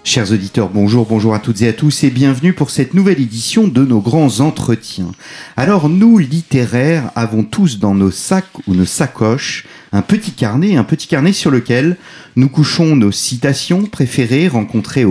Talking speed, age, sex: 175 wpm, 40-59, male